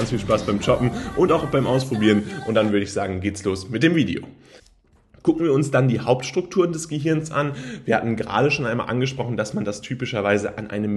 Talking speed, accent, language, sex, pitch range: 225 wpm, German, German, male, 105-145 Hz